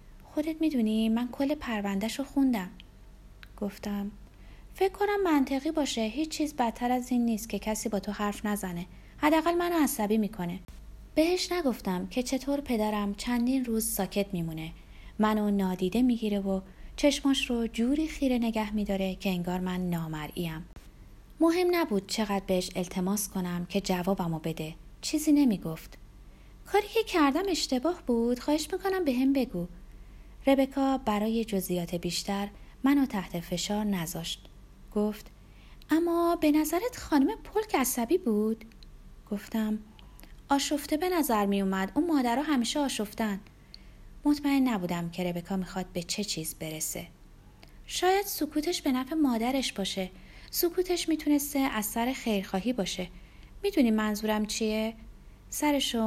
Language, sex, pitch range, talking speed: Persian, female, 195-285 Hz, 130 wpm